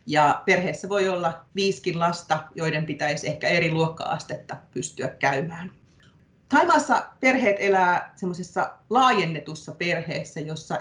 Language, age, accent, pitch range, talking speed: Finnish, 30-49, native, 155-195 Hz, 105 wpm